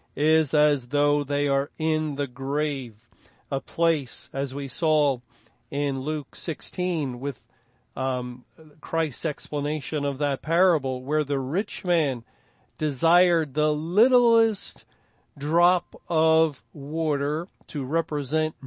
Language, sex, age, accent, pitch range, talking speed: English, male, 40-59, American, 135-170 Hz, 115 wpm